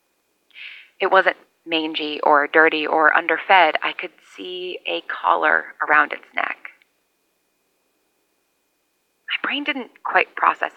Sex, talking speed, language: female, 110 wpm, English